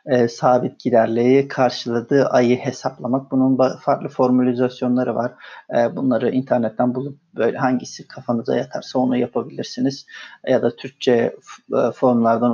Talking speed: 125 wpm